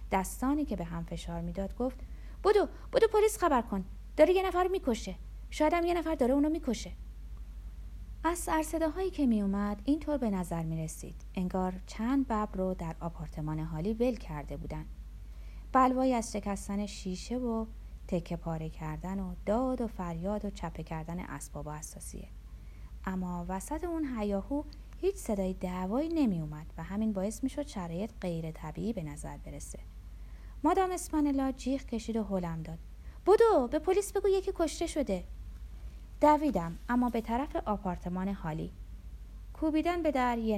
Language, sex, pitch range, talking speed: Persian, female, 165-270 Hz, 150 wpm